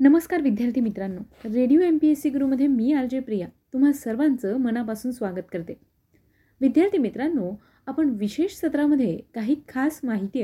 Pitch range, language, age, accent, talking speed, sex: 210-295 Hz, Marathi, 30-49, native, 145 wpm, female